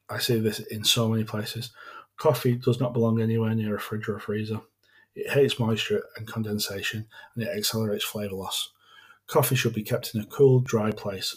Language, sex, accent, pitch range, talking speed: English, male, British, 110-135 Hz, 190 wpm